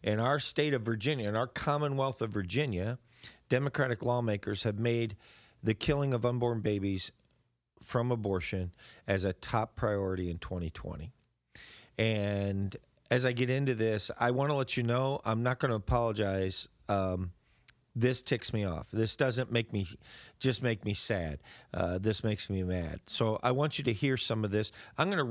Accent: American